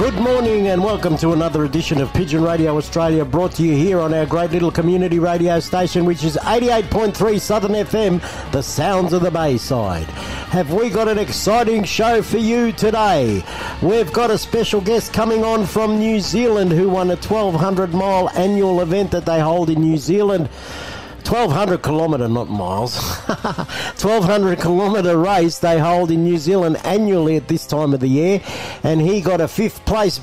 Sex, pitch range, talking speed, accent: male, 160-205 Hz, 175 wpm, Australian